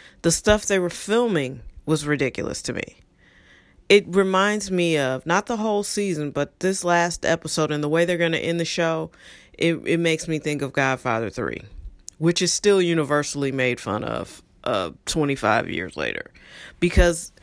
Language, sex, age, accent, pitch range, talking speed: English, female, 40-59, American, 140-170 Hz, 170 wpm